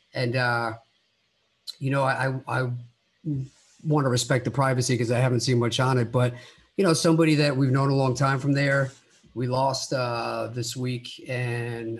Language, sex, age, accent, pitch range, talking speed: English, male, 50-69, American, 125-140 Hz, 180 wpm